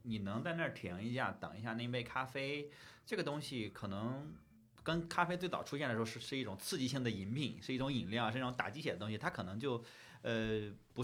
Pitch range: 100-135 Hz